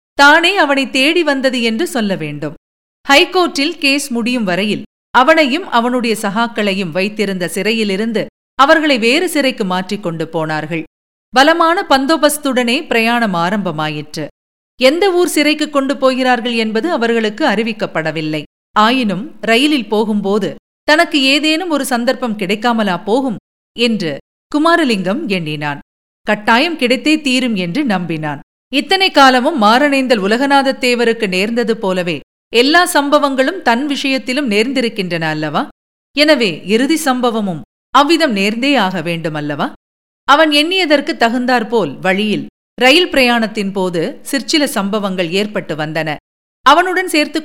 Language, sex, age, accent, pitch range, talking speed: Tamil, female, 50-69, native, 200-280 Hz, 105 wpm